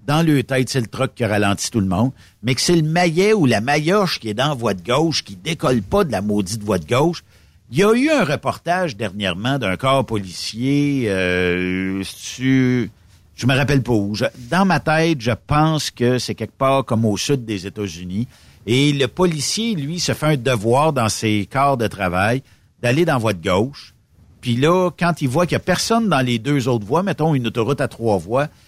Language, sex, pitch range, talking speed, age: French, male, 105-155 Hz, 225 wpm, 60-79